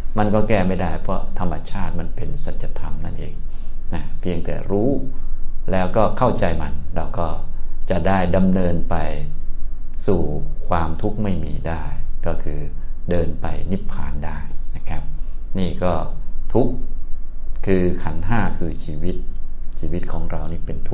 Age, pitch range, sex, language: 20-39, 75-95 Hz, male, Thai